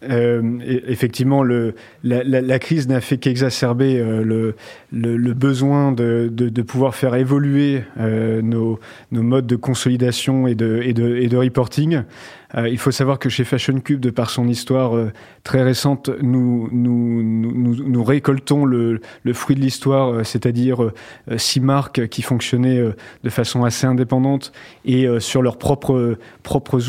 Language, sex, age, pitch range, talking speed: French, male, 30-49, 120-135 Hz, 155 wpm